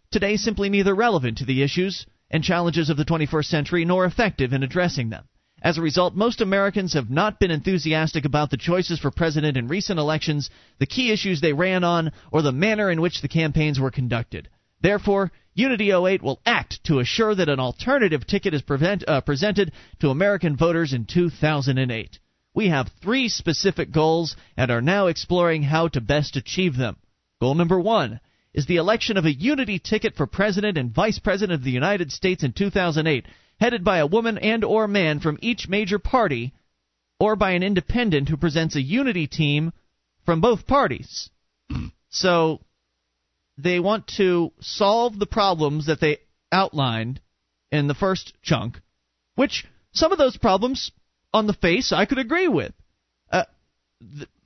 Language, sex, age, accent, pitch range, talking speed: English, male, 30-49, American, 145-200 Hz, 170 wpm